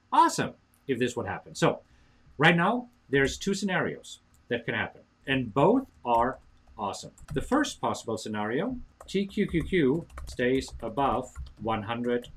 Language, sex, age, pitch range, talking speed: English, male, 50-69, 110-165 Hz, 125 wpm